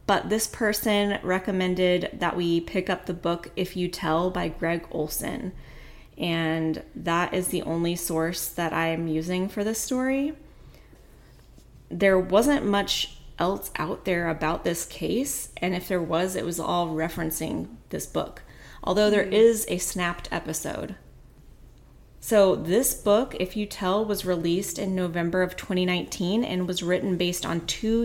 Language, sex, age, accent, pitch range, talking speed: English, female, 30-49, American, 165-195 Hz, 155 wpm